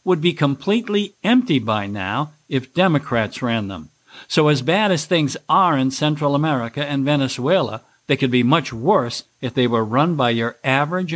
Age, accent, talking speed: 60-79, American, 175 wpm